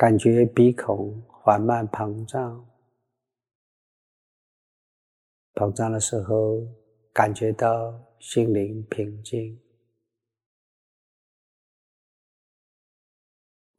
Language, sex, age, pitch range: Chinese, male, 50-69, 110-120 Hz